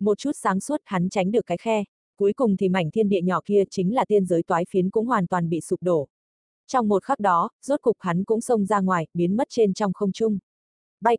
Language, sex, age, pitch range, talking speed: Vietnamese, female, 20-39, 180-225 Hz, 250 wpm